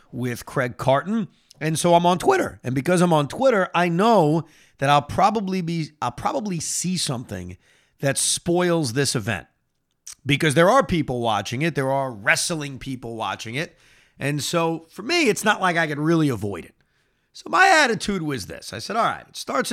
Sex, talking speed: male, 190 wpm